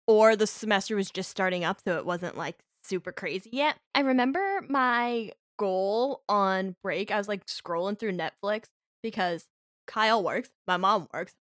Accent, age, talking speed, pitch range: American, 10-29, 165 wpm, 195-305 Hz